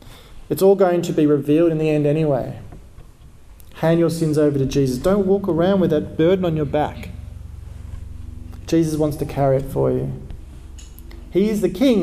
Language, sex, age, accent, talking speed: English, male, 40-59, Australian, 180 wpm